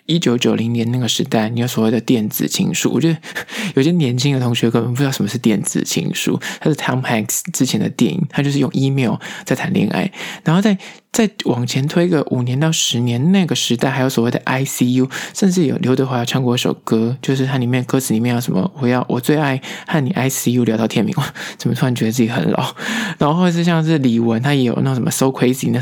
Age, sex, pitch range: 20-39, male, 120-155 Hz